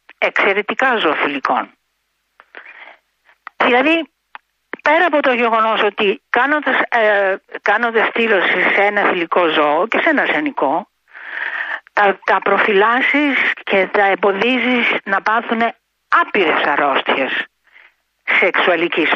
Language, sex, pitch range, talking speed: Greek, female, 220-295 Hz, 95 wpm